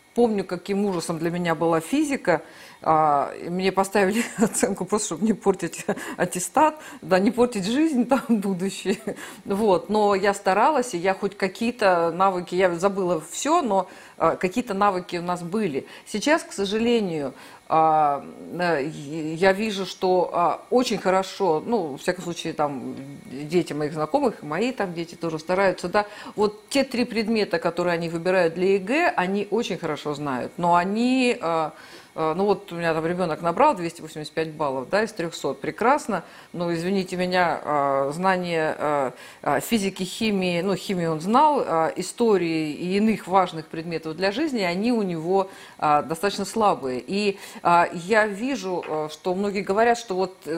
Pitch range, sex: 170-215 Hz, female